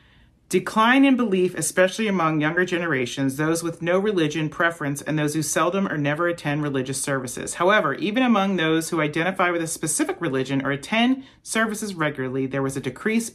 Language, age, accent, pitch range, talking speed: English, 40-59, American, 145-230 Hz, 175 wpm